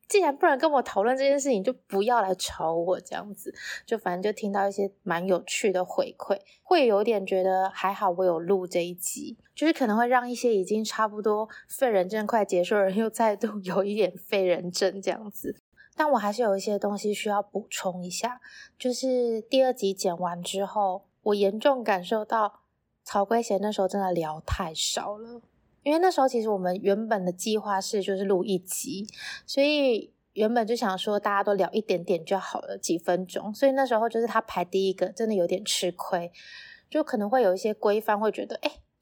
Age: 20-39